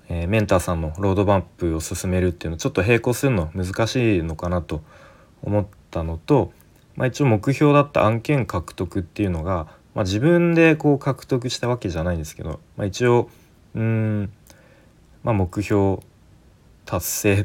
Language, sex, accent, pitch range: Japanese, male, native, 85-110 Hz